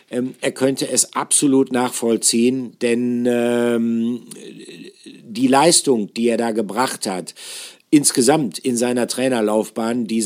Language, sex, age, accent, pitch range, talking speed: German, male, 50-69, German, 120-135 Hz, 110 wpm